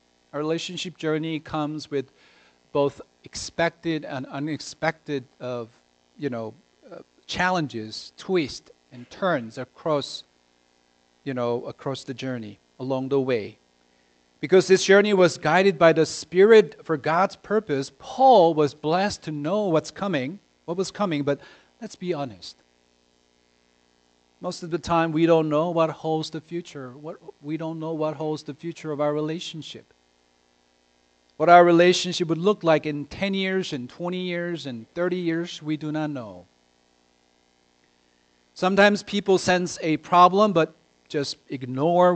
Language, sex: English, male